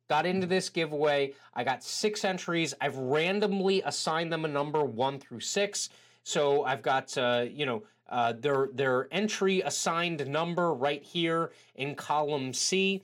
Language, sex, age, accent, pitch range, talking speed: English, male, 30-49, American, 140-190 Hz, 155 wpm